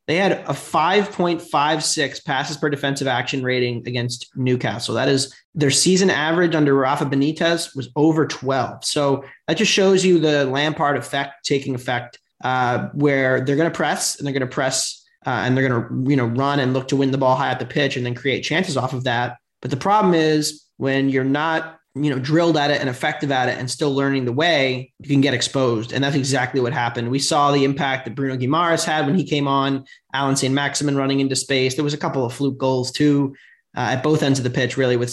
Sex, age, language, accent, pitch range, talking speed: male, 20-39, English, American, 130-150 Hz, 225 wpm